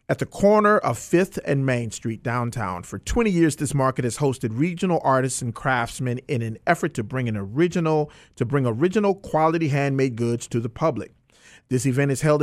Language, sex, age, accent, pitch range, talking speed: English, male, 40-59, American, 125-165 Hz, 195 wpm